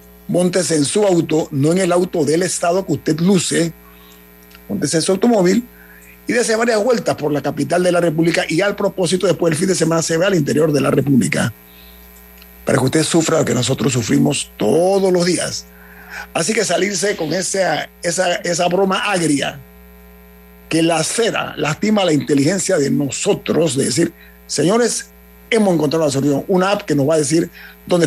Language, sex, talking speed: Spanish, male, 175 wpm